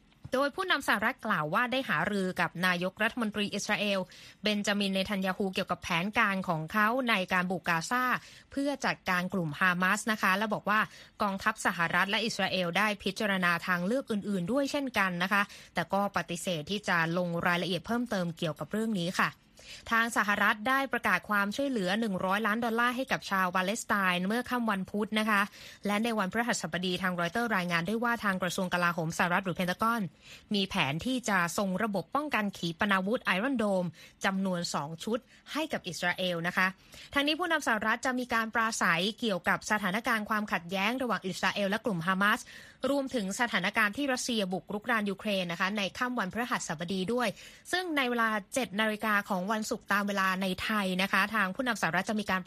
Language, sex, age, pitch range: Thai, female, 20-39, 185-230 Hz